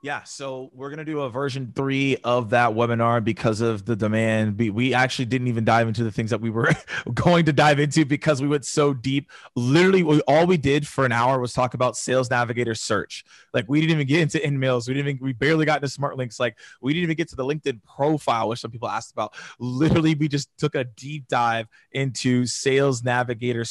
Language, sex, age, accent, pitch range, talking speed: English, male, 20-39, American, 125-150 Hz, 225 wpm